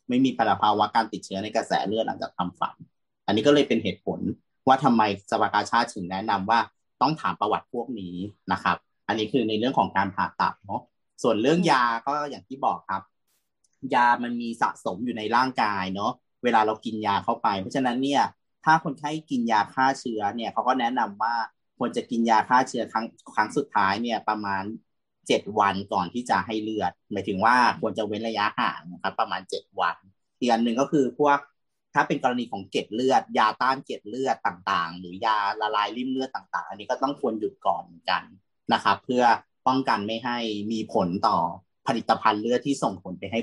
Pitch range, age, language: 100-130 Hz, 30-49, Thai